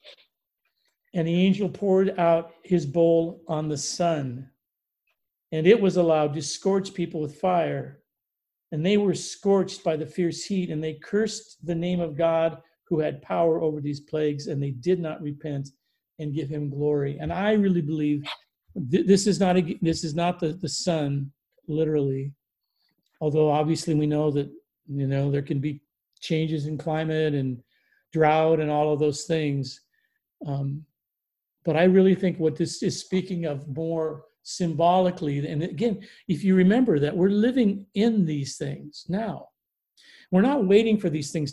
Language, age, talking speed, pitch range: English, 50-69, 160 wpm, 150-190 Hz